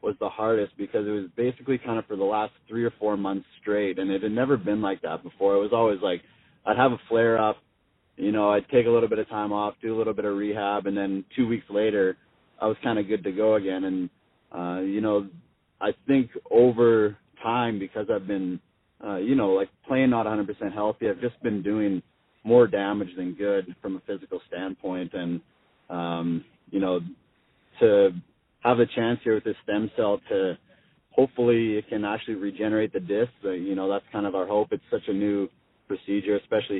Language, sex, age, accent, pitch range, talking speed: English, male, 30-49, American, 95-110 Hz, 215 wpm